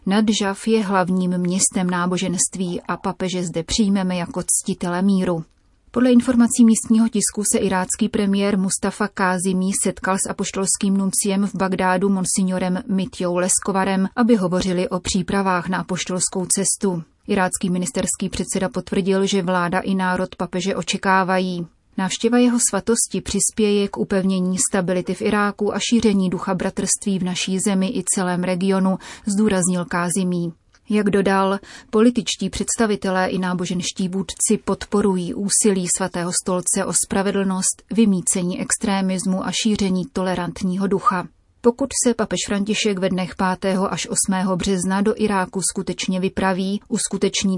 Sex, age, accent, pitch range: female, 30-49, native, 185-205 Hz